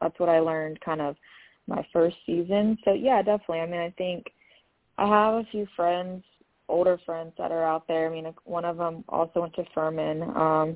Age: 20-39